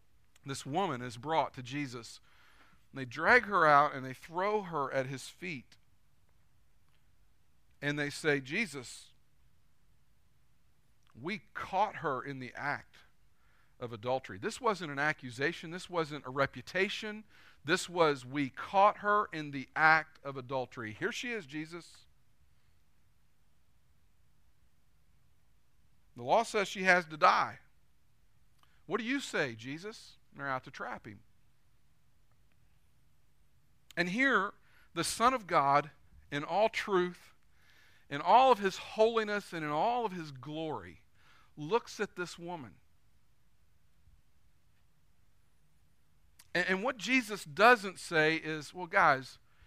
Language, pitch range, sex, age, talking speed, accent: English, 125-185 Hz, male, 50-69, 120 wpm, American